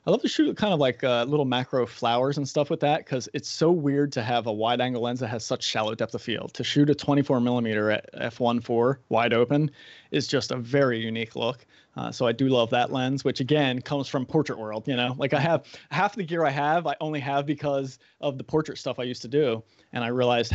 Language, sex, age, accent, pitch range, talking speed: English, male, 30-49, American, 115-145 Hz, 245 wpm